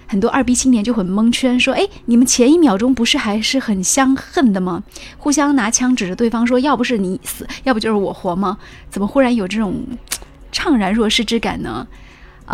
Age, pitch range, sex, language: 20-39, 205-260 Hz, female, Chinese